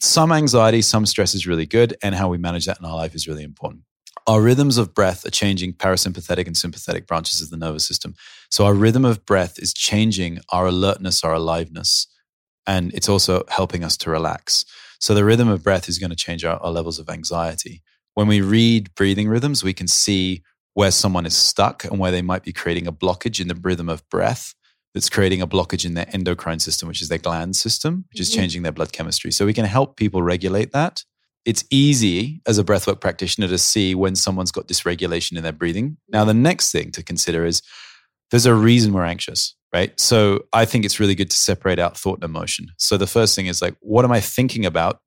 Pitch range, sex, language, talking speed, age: 85-110 Hz, male, English, 220 wpm, 30-49